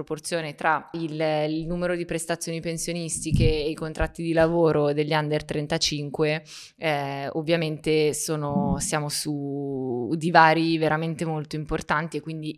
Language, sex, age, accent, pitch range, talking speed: Italian, female, 20-39, native, 155-180 Hz, 125 wpm